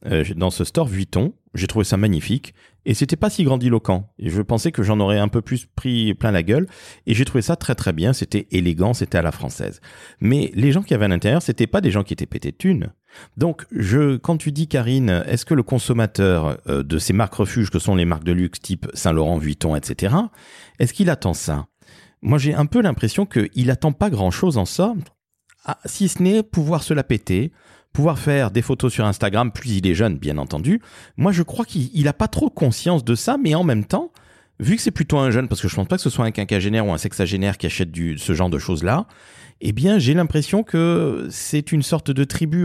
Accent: French